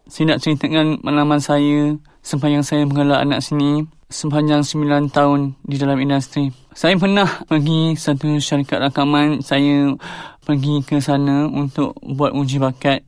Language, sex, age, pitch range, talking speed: Malay, male, 20-39, 145-160 Hz, 140 wpm